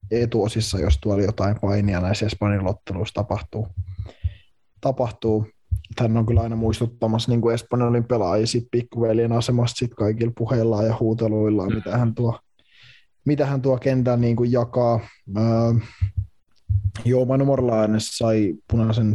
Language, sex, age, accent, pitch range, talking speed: Finnish, male, 20-39, native, 105-120 Hz, 120 wpm